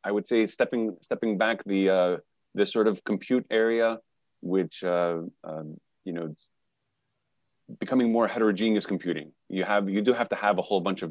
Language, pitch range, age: English, 90-110 Hz, 30-49